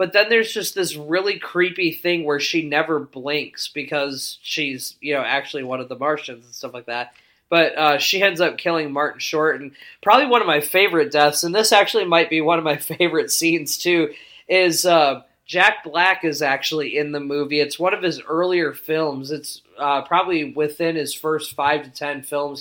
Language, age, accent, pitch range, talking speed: English, 20-39, American, 145-165 Hz, 200 wpm